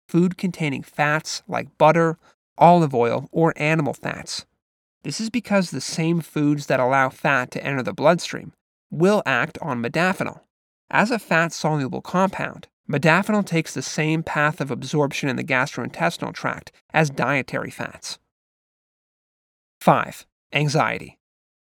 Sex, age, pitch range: male, 30-49, 135-165 Hz